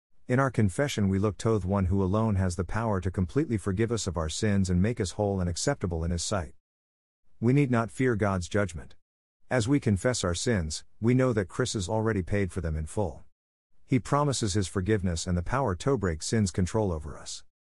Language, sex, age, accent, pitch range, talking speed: English, male, 50-69, American, 90-115 Hz, 215 wpm